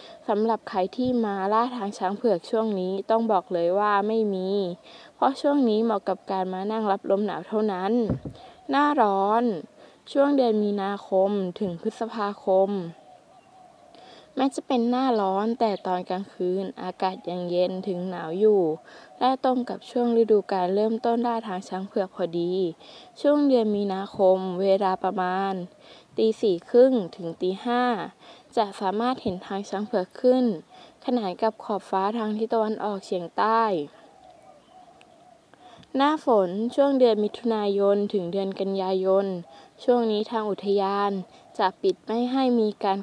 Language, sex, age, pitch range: Thai, female, 20-39, 190-235 Hz